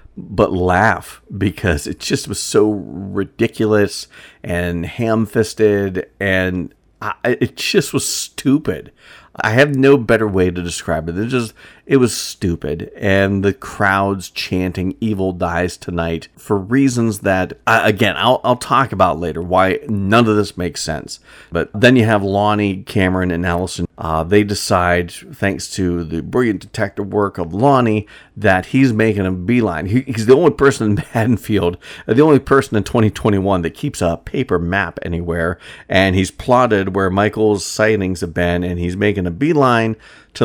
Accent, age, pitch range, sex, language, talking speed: American, 40-59, 90-110 Hz, male, English, 160 wpm